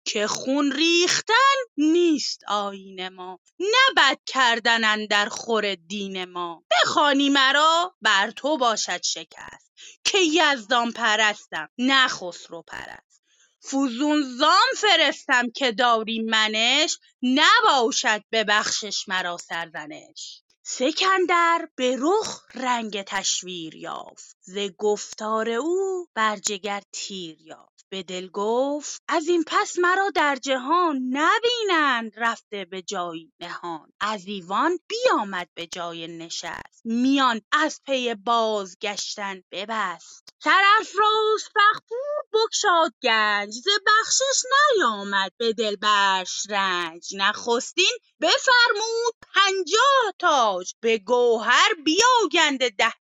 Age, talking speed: 30-49, 105 wpm